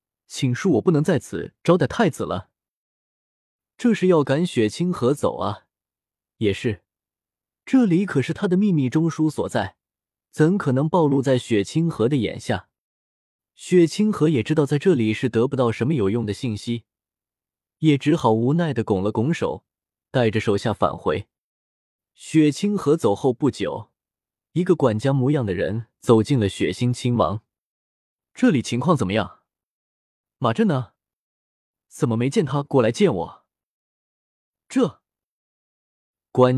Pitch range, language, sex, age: 105-160 Hz, Chinese, male, 20-39